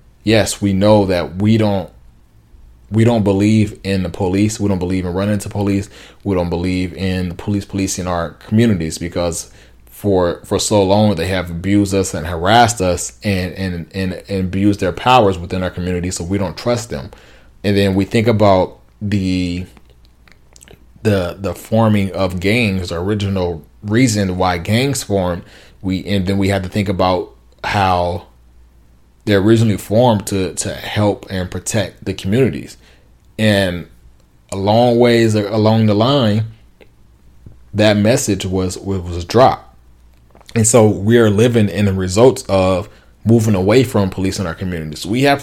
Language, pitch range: English, 90-105 Hz